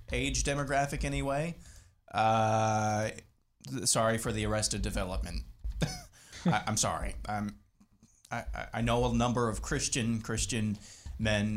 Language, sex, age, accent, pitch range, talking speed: English, male, 20-39, American, 100-115 Hz, 120 wpm